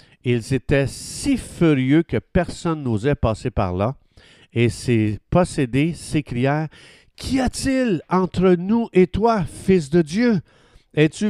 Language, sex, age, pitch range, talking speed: French, male, 50-69, 110-150 Hz, 135 wpm